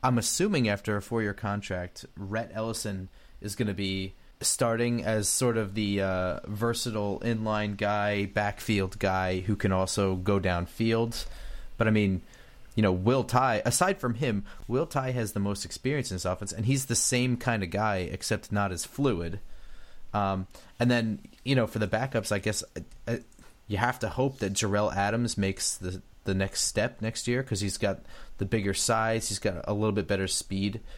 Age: 30-49